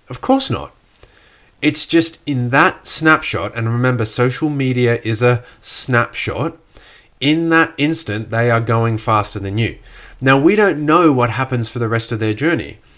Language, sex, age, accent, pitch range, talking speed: English, male, 30-49, Australian, 115-135 Hz, 165 wpm